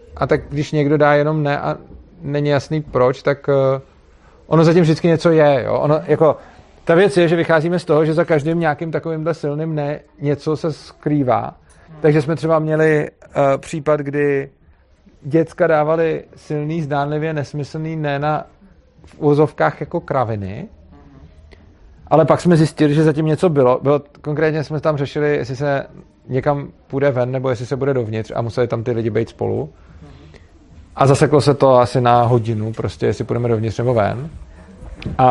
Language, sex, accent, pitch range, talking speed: Czech, male, native, 125-155 Hz, 170 wpm